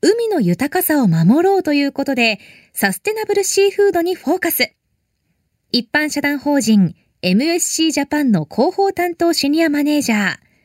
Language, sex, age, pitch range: Japanese, female, 20-39, 225-335 Hz